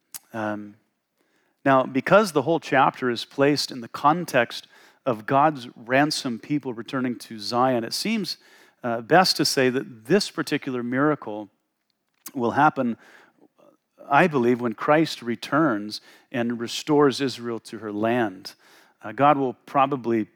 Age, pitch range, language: 40-59, 115-150 Hz, English